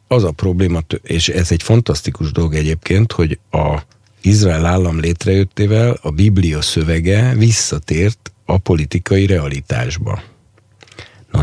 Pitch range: 80-110 Hz